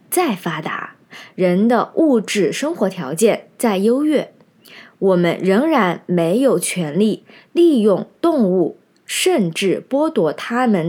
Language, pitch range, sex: Chinese, 180-265 Hz, female